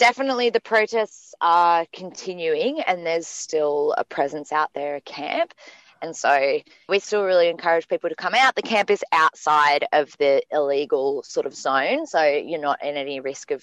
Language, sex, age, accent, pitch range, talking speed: English, female, 20-39, Australian, 145-215 Hz, 180 wpm